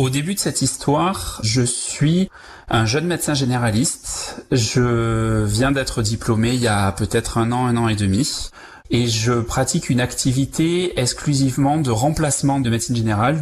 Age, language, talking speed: 30-49, French, 160 wpm